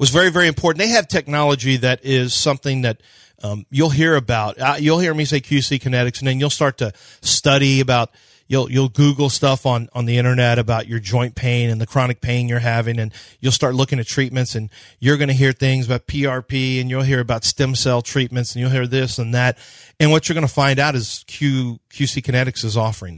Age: 40-59